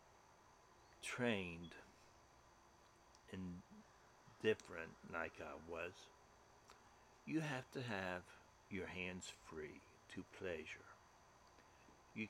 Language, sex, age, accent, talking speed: English, male, 60-79, American, 80 wpm